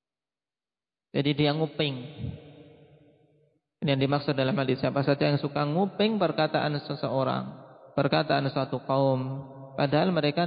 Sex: male